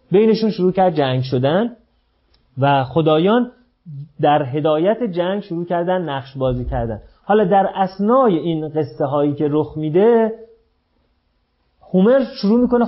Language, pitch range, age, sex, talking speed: Persian, 130-195 Hz, 30-49, male, 125 wpm